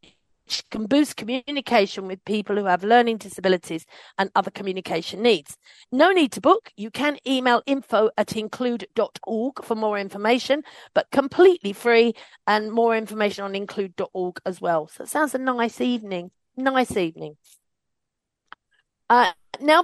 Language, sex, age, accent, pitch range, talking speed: English, female, 40-59, British, 195-265 Hz, 140 wpm